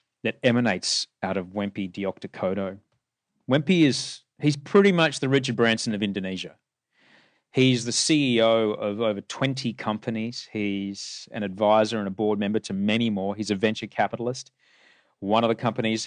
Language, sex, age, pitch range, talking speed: English, male, 30-49, 100-120 Hz, 155 wpm